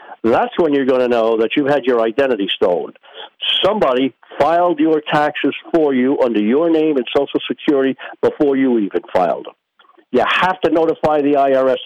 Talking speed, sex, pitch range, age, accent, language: 175 wpm, male, 130-165 Hz, 50-69, American, English